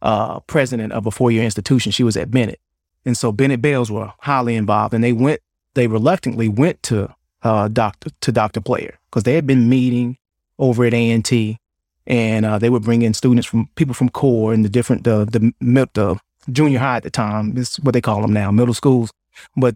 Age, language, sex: 30-49, English, male